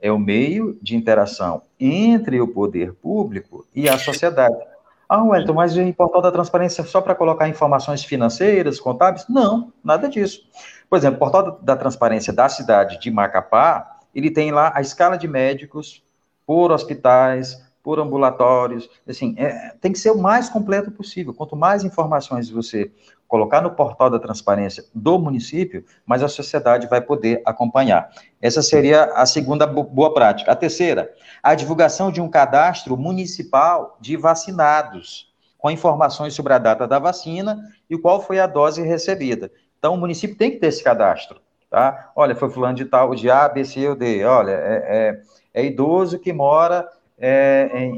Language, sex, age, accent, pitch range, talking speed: Portuguese, male, 50-69, Brazilian, 130-180 Hz, 165 wpm